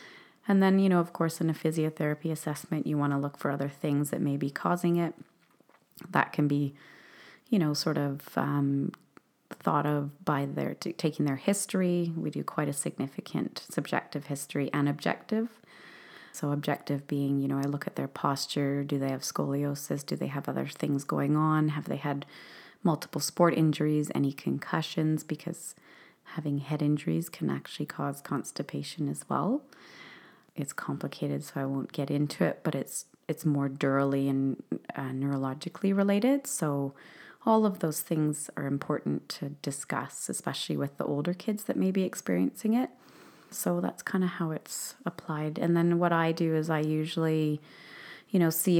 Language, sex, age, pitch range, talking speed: English, female, 30-49, 140-170 Hz, 170 wpm